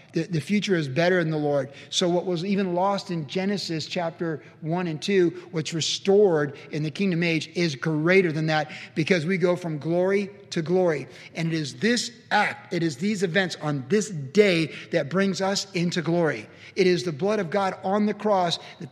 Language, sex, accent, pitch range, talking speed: English, male, American, 155-190 Hz, 195 wpm